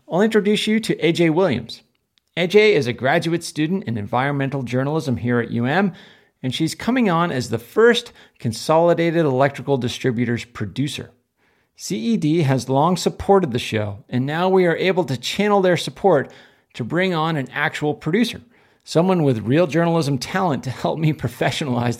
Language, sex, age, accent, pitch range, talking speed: English, male, 40-59, American, 120-170 Hz, 160 wpm